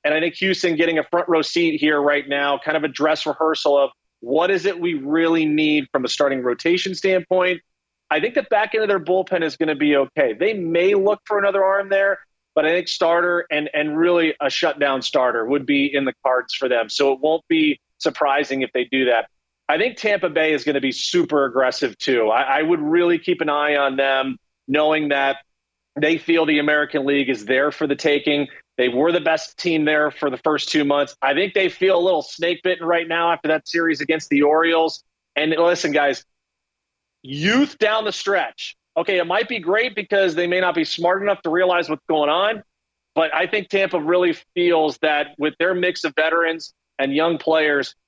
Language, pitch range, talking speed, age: English, 150-180 Hz, 215 wpm, 30-49